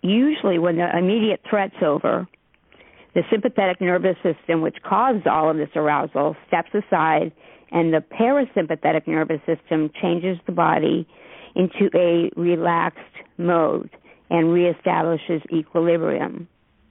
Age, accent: 50-69, American